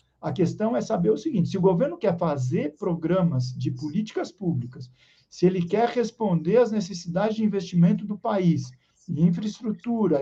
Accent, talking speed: Brazilian, 160 wpm